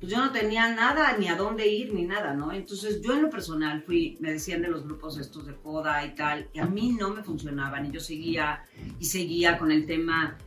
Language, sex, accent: Spanish, female, Mexican